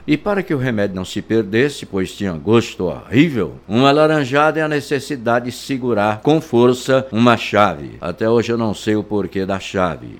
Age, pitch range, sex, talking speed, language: 60-79, 105-145 Hz, male, 195 wpm, Portuguese